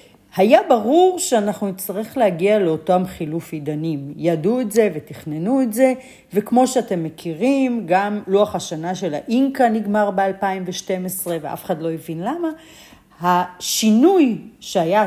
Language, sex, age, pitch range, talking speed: Hebrew, female, 40-59, 170-240 Hz, 125 wpm